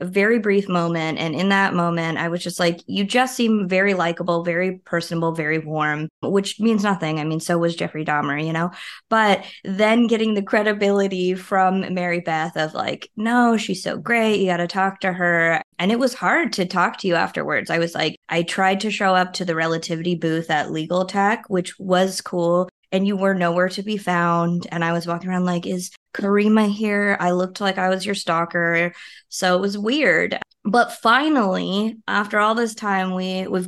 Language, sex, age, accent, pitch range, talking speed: English, female, 20-39, American, 170-200 Hz, 200 wpm